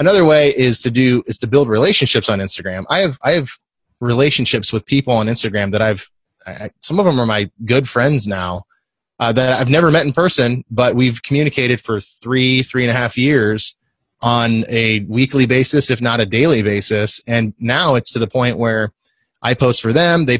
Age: 20-39